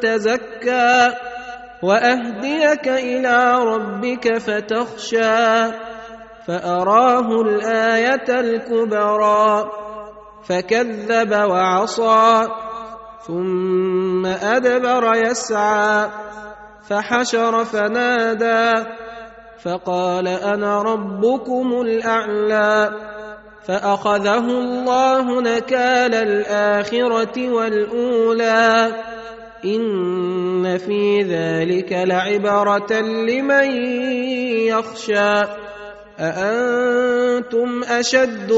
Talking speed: 50 wpm